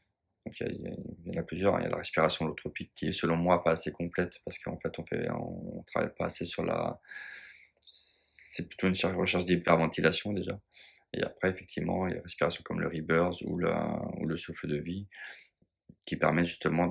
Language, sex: French, male